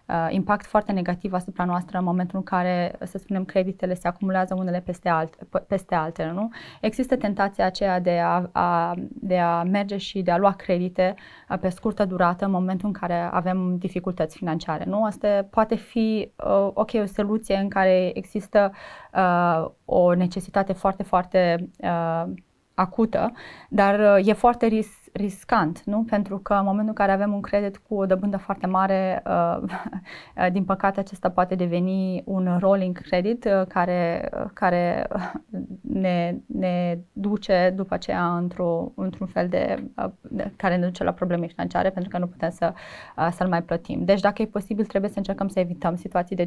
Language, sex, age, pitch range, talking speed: Romanian, female, 20-39, 180-205 Hz, 160 wpm